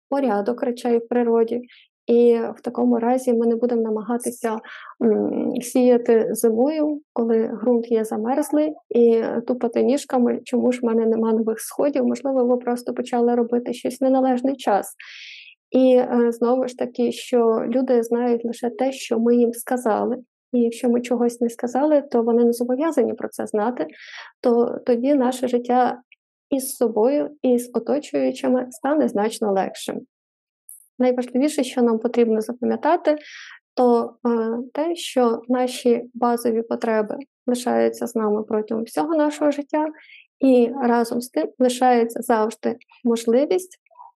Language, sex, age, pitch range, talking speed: Ukrainian, female, 20-39, 230-260 Hz, 130 wpm